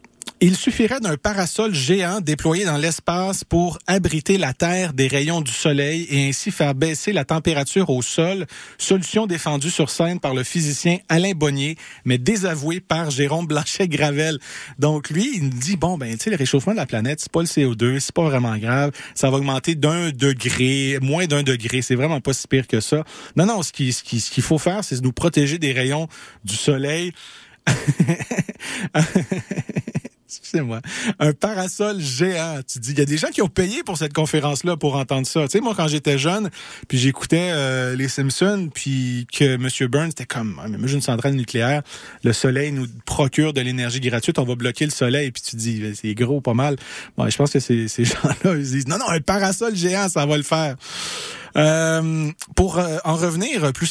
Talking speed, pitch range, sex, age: 205 wpm, 130-170 Hz, male, 40-59